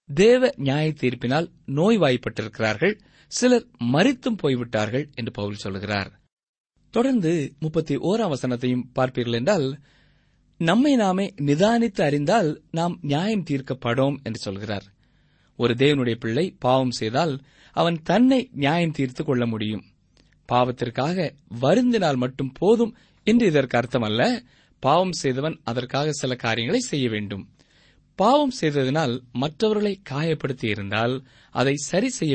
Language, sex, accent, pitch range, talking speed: Tamil, male, native, 120-175 Hz, 100 wpm